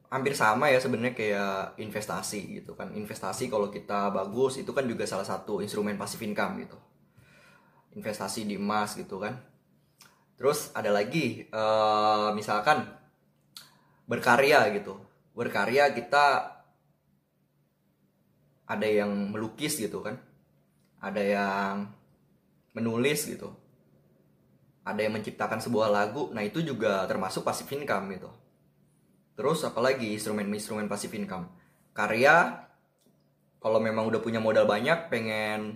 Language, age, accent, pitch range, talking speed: Indonesian, 20-39, native, 100-115 Hz, 115 wpm